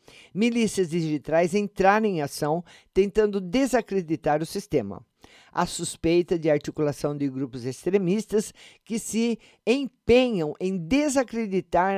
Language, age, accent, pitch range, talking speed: Portuguese, 50-69, Brazilian, 145-190 Hz, 105 wpm